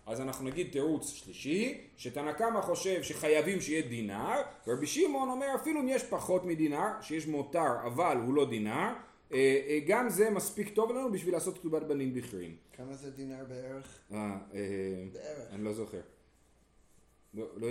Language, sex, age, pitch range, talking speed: Hebrew, male, 40-59, 115-195 Hz, 145 wpm